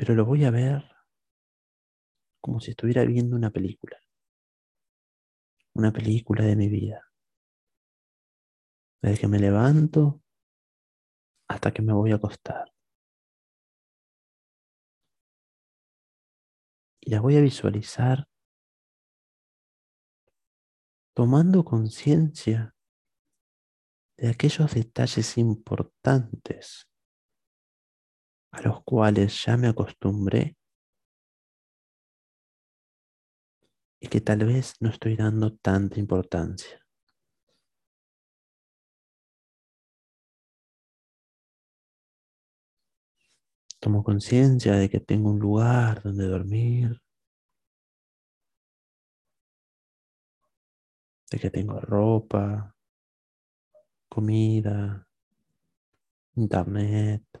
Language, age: Spanish, 40-59